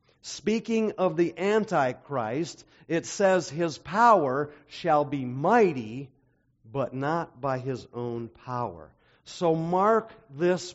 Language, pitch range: English, 150-210 Hz